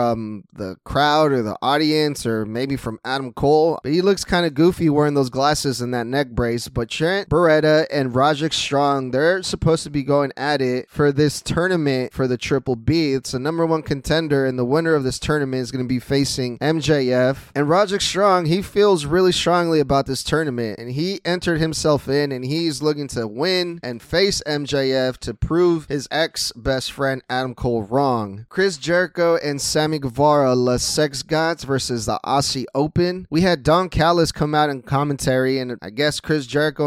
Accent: American